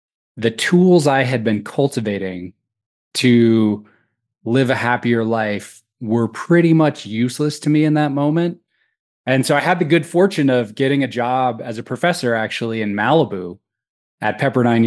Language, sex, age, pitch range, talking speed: English, male, 20-39, 105-130 Hz, 155 wpm